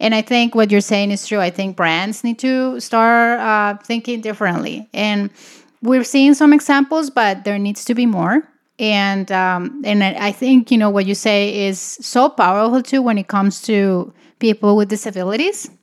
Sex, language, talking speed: female, English, 185 wpm